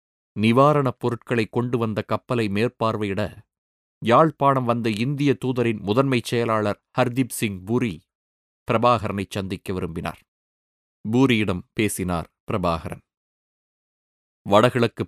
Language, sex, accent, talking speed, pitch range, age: Tamil, male, native, 90 wpm, 95-125 Hz, 30-49